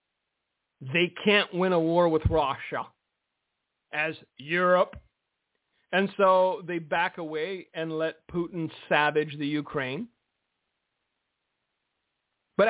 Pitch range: 170-230 Hz